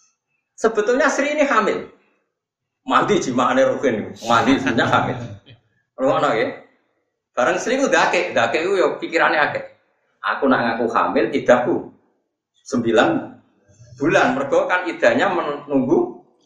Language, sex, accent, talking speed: Indonesian, male, native, 120 wpm